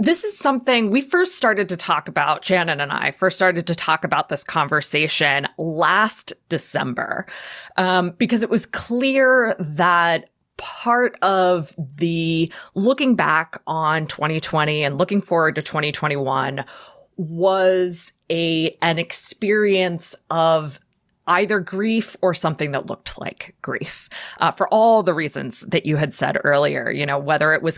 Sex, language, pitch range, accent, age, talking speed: female, English, 165-225 Hz, American, 20-39, 145 wpm